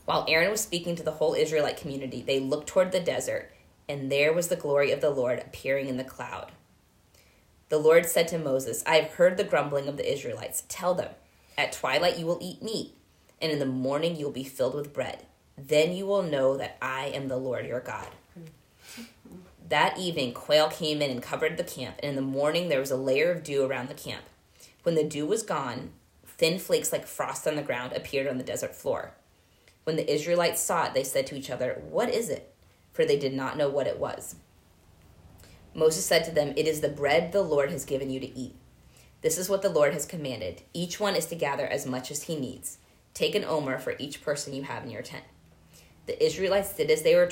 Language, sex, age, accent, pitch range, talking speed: English, female, 20-39, American, 135-175 Hz, 225 wpm